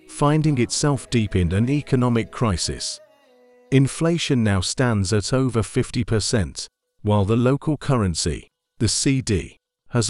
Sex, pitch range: male, 105-135 Hz